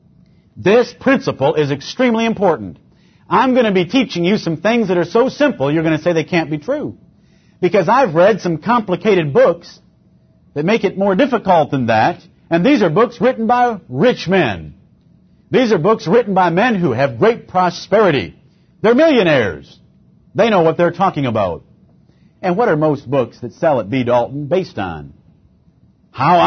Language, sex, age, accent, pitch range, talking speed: English, male, 50-69, American, 140-205 Hz, 175 wpm